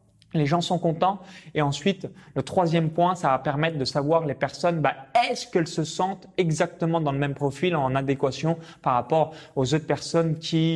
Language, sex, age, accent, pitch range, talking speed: French, male, 20-39, French, 150-205 Hz, 190 wpm